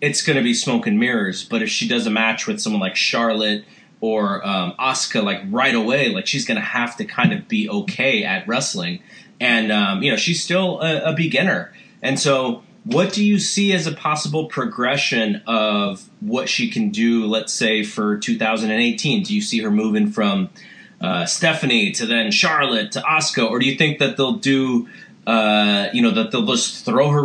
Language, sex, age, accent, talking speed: English, male, 30-49, American, 200 wpm